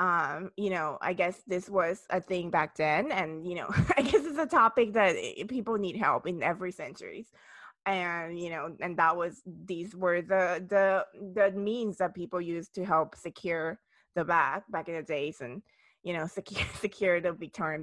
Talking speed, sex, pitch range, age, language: 190 wpm, female, 175-210 Hz, 20-39, English